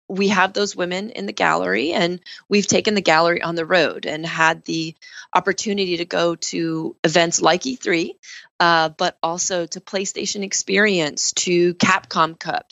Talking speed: 155 wpm